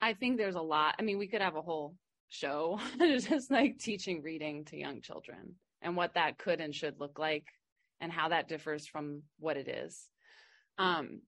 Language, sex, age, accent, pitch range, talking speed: English, female, 20-39, American, 160-225 Hz, 195 wpm